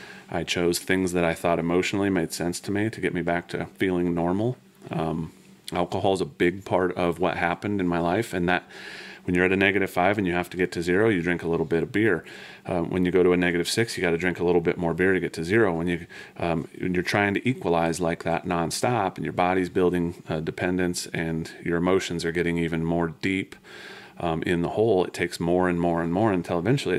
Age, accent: 30-49, American